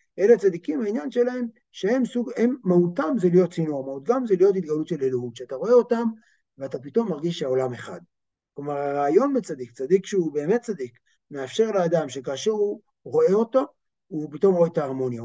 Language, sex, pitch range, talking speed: Hebrew, male, 140-210 Hz, 170 wpm